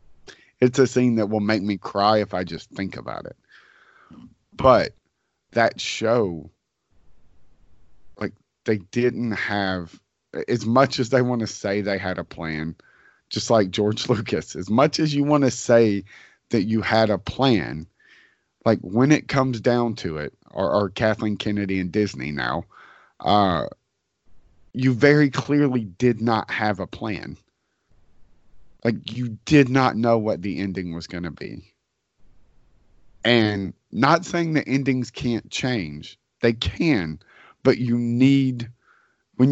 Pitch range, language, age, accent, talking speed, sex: 95-125 Hz, English, 40-59, American, 145 wpm, male